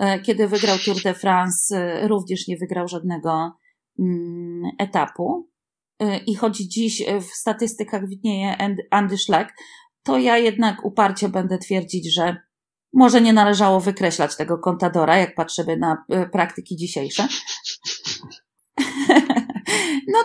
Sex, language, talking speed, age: female, Polish, 115 wpm, 30-49